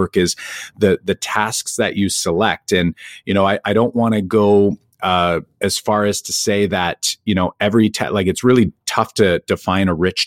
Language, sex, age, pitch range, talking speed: English, male, 40-59, 95-120 Hz, 205 wpm